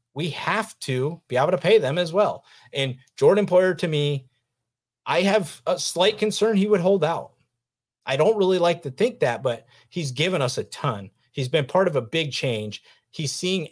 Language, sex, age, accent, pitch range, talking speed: English, male, 30-49, American, 125-150 Hz, 200 wpm